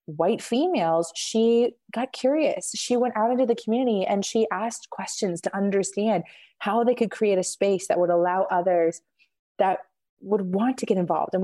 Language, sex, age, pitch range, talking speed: English, female, 20-39, 175-220 Hz, 180 wpm